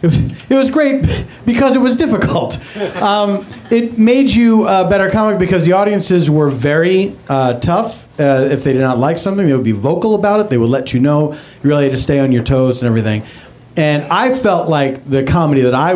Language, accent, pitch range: English, American, 120-175 Hz